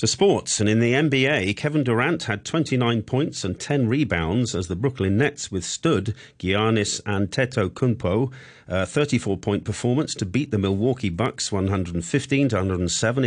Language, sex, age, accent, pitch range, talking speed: English, male, 40-59, British, 90-120 Hz, 135 wpm